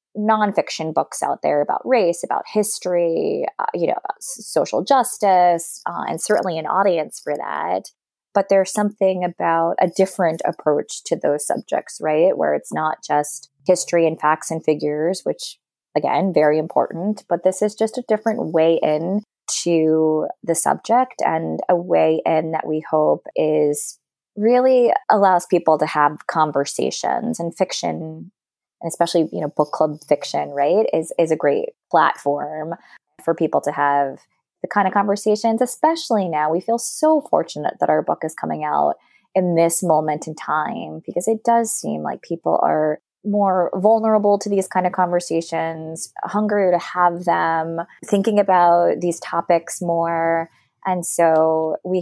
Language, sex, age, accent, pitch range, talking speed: English, female, 20-39, American, 160-205 Hz, 155 wpm